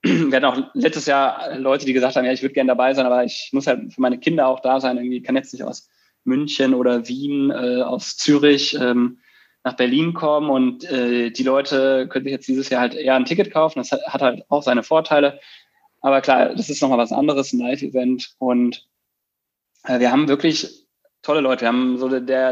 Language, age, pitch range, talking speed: German, 20-39, 125-150 Hz, 220 wpm